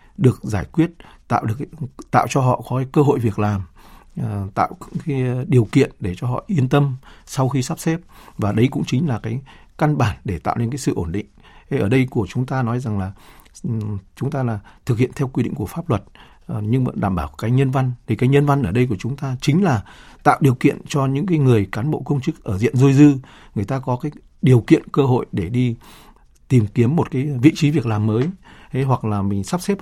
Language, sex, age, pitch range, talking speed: Vietnamese, male, 60-79, 115-145 Hz, 250 wpm